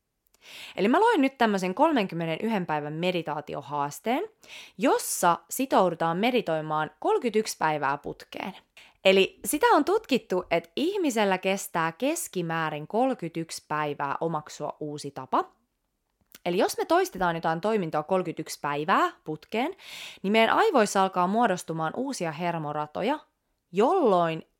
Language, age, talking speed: English, 20-39, 105 wpm